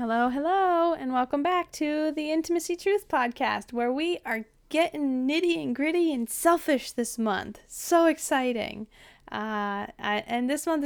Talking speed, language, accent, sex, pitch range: 150 wpm, English, American, female, 210-275 Hz